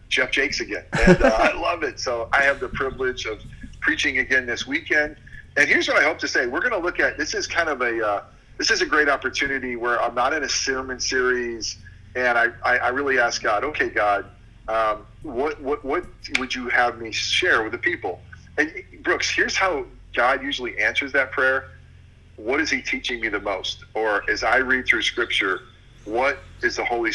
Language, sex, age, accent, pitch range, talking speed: English, male, 40-59, American, 105-150 Hz, 210 wpm